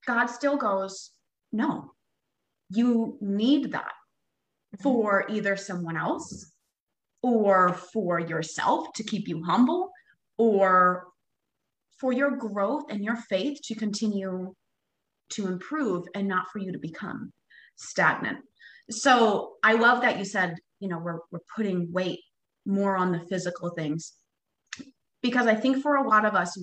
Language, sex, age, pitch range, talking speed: English, female, 20-39, 185-240 Hz, 135 wpm